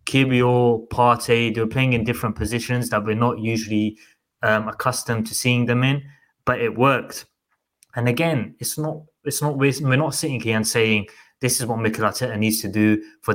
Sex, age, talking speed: male, 20-39, 180 wpm